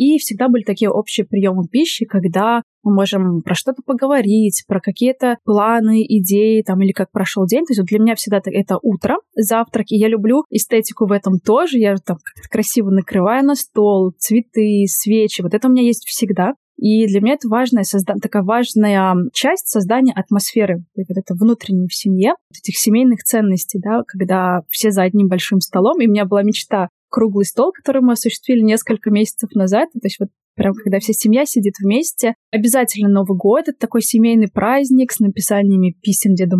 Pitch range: 195-235 Hz